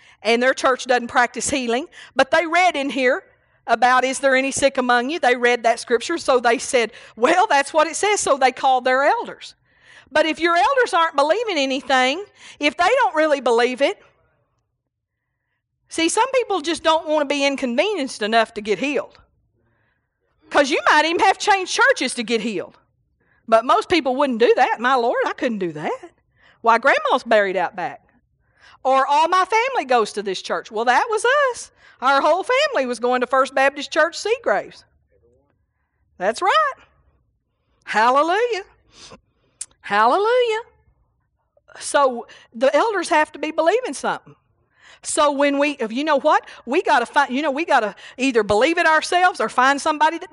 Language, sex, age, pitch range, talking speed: English, female, 50-69, 245-325 Hz, 170 wpm